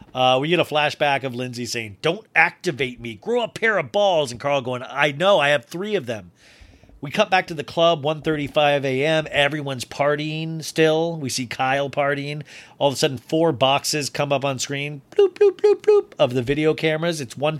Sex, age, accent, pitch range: male, 40-59, American, 130-165 Hz